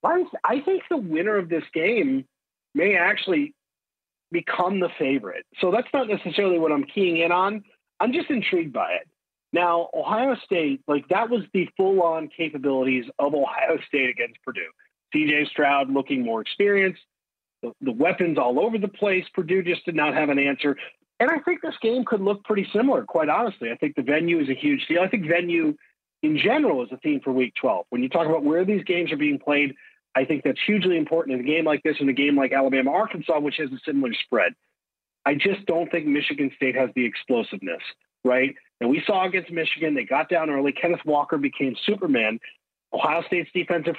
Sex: male